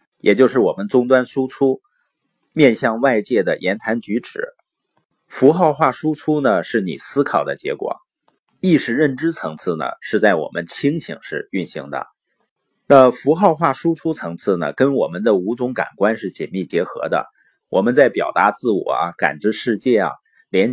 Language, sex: Chinese, male